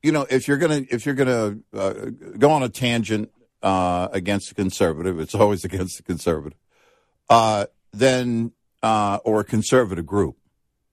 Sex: male